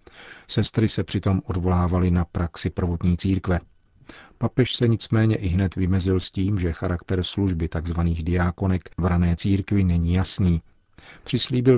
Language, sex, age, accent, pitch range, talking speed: Czech, male, 40-59, native, 90-100 Hz, 140 wpm